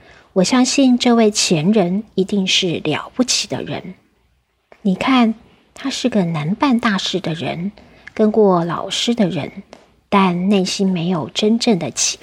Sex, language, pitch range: female, Chinese, 185-225 Hz